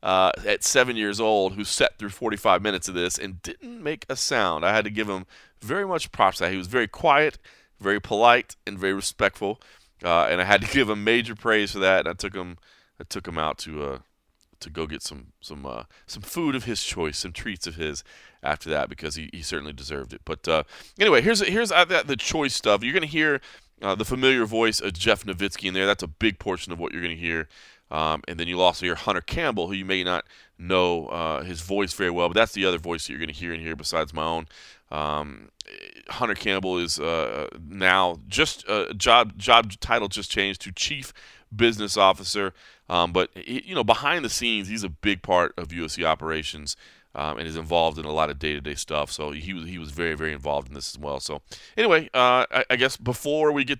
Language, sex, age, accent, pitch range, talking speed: English, male, 30-49, American, 80-110 Hz, 230 wpm